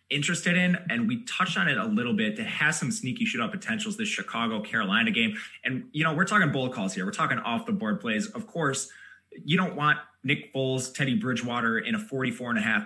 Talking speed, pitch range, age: 230 wpm, 140-220 Hz, 20-39